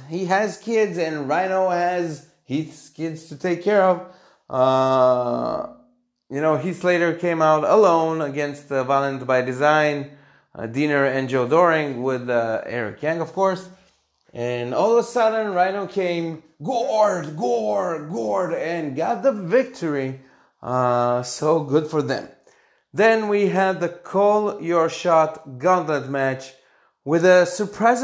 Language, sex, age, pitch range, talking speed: English, male, 30-49, 130-185 Hz, 145 wpm